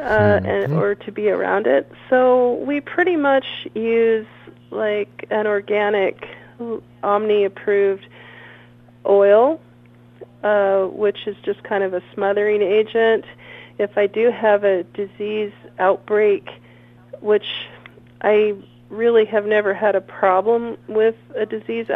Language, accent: English, American